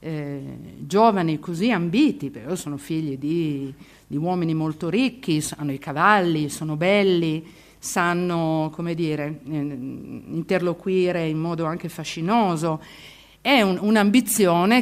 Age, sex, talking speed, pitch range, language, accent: 50-69, female, 115 wpm, 155-185 Hz, Italian, native